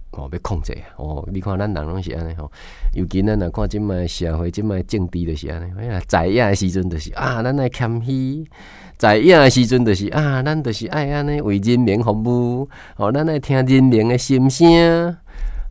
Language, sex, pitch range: Chinese, male, 85-125 Hz